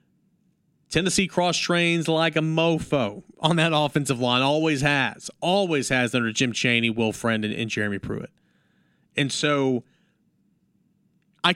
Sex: male